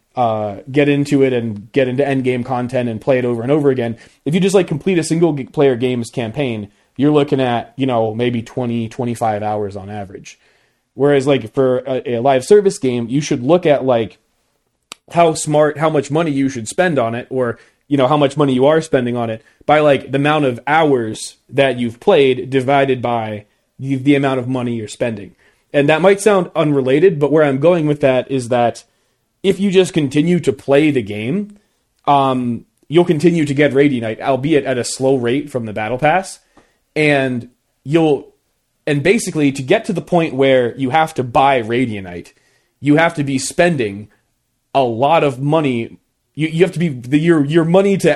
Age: 30-49